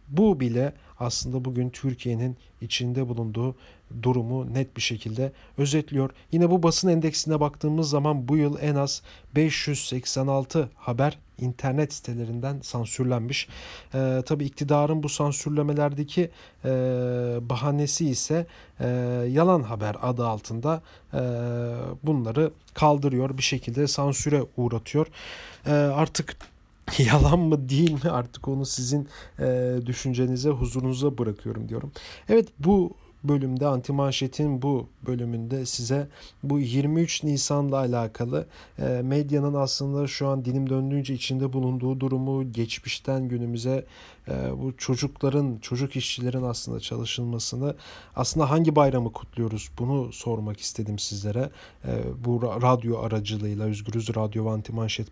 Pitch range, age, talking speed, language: 115-145 Hz, 40-59, 115 wpm, German